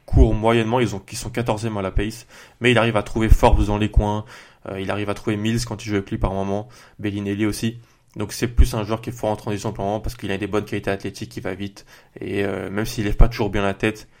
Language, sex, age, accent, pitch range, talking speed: French, male, 20-39, French, 100-115 Hz, 280 wpm